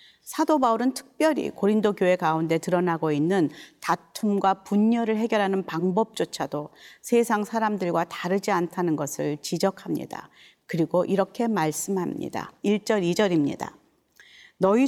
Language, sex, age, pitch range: Korean, female, 40-59, 170-220 Hz